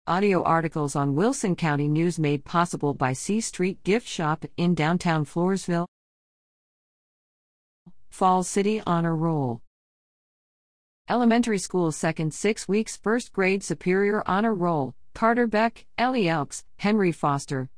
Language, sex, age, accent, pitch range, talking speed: English, female, 50-69, American, 155-220 Hz, 120 wpm